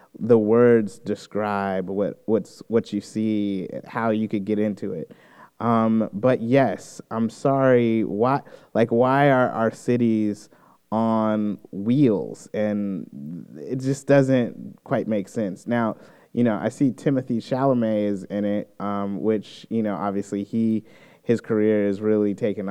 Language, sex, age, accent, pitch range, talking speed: English, male, 20-39, American, 105-120 Hz, 145 wpm